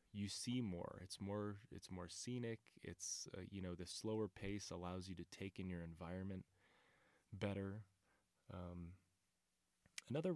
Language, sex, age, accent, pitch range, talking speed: English, male, 20-39, American, 90-105 Hz, 145 wpm